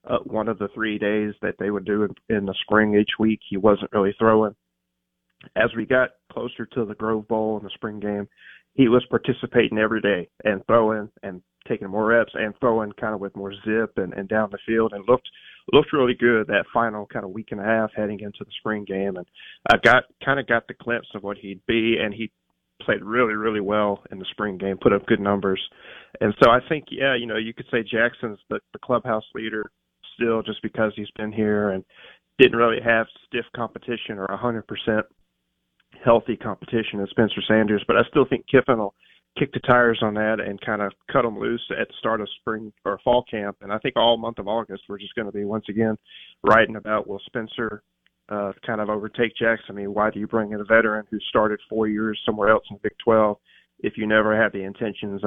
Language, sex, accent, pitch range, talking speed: English, male, American, 100-115 Hz, 225 wpm